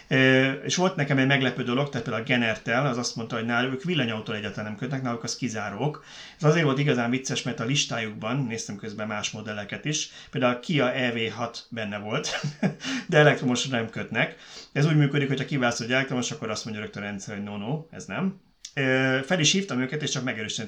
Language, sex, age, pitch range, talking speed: Hungarian, male, 30-49, 110-140 Hz, 210 wpm